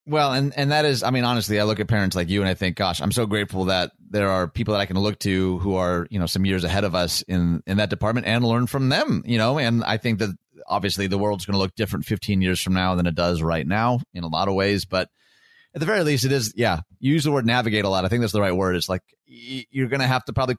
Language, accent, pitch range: English, American, 95-125 Hz